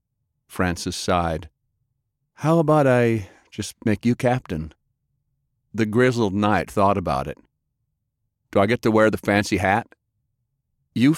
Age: 50-69